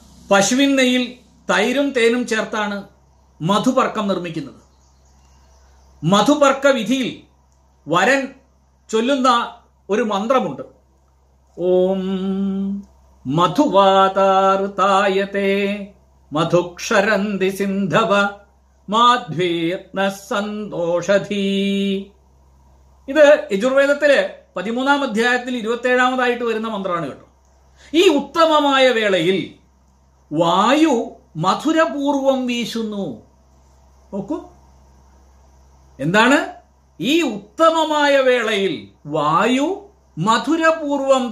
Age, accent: 50-69, native